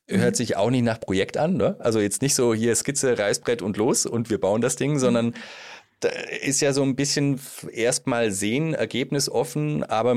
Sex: male